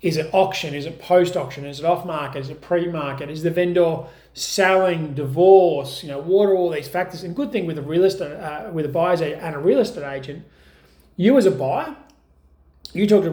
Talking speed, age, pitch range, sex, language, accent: 220 wpm, 30-49, 150-200 Hz, male, English, Australian